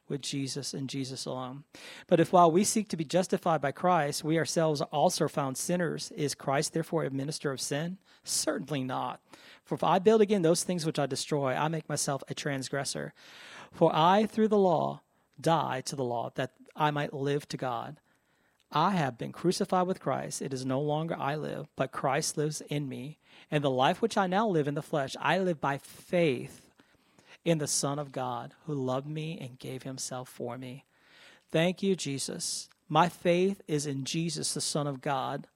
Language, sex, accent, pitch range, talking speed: English, male, American, 140-175 Hz, 195 wpm